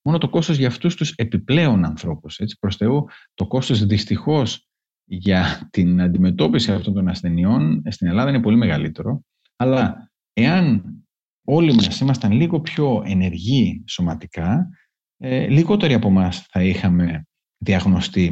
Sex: male